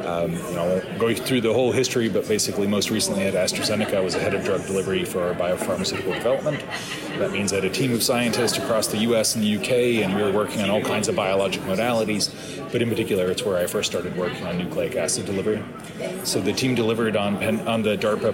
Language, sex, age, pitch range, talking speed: English, male, 30-49, 105-125 Hz, 230 wpm